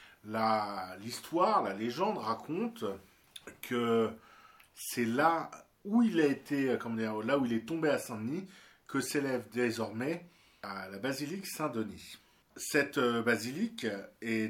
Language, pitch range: French, 110-145 Hz